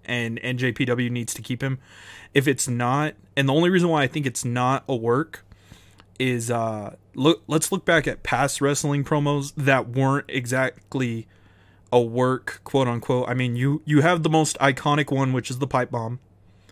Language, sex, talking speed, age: English, male, 185 wpm, 20-39